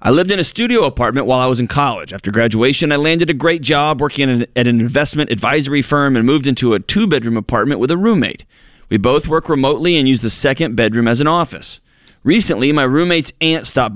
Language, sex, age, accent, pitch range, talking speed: English, male, 30-49, American, 110-145 Hz, 215 wpm